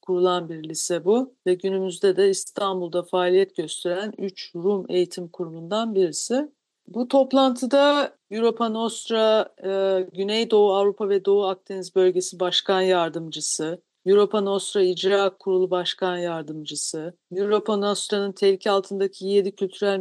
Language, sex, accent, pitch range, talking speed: Turkish, female, native, 185-220 Hz, 120 wpm